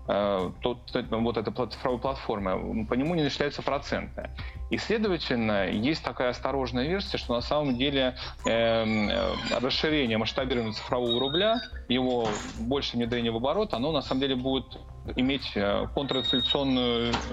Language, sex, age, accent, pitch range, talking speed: Russian, male, 20-39, native, 110-135 Hz, 130 wpm